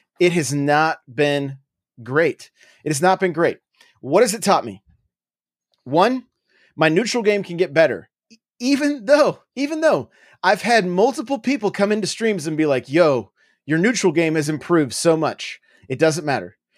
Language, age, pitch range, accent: English, 30-49, 140-200 Hz, American